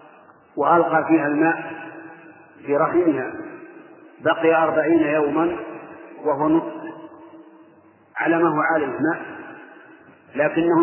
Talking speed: 80 wpm